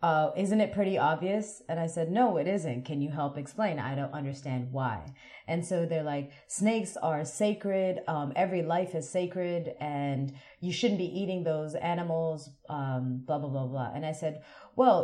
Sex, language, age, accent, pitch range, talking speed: female, English, 30-49, American, 140-170 Hz, 190 wpm